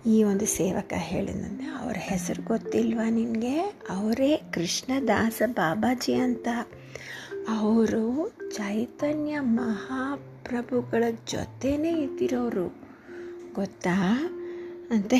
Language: Kannada